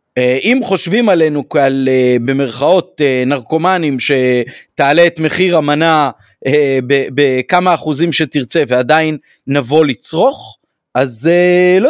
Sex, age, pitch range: male, 40-59, 145-215 Hz